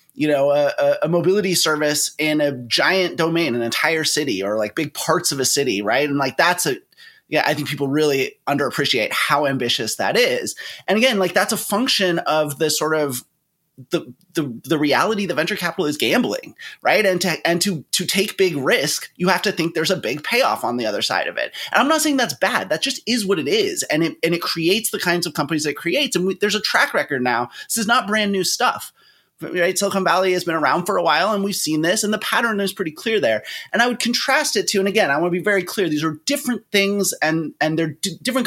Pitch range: 155-210 Hz